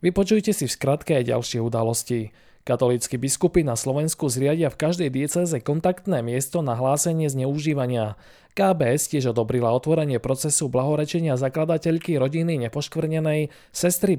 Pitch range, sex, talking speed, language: 125-155 Hz, male, 125 wpm, Slovak